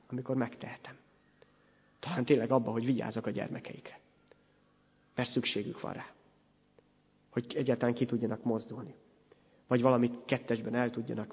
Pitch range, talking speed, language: 115-135 Hz, 120 wpm, Hungarian